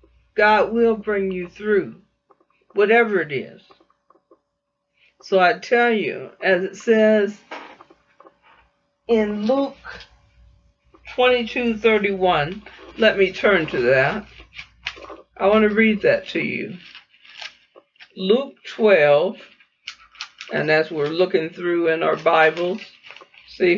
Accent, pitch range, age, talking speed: American, 185-250 Hz, 60-79, 105 wpm